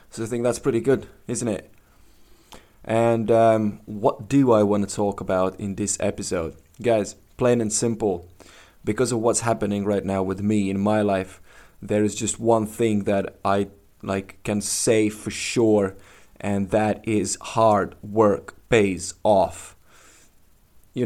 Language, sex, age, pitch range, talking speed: English, male, 20-39, 95-110 Hz, 155 wpm